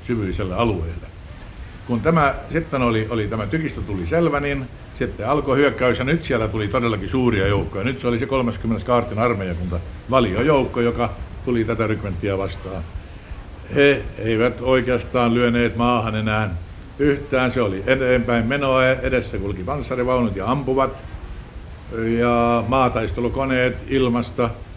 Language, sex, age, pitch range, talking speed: Finnish, male, 60-79, 100-125 Hz, 130 wpm